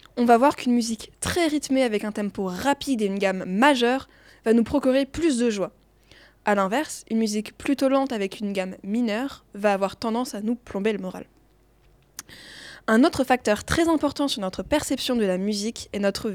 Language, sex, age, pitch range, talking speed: French, female, 20-39, 210-260 Hz, 190 wpm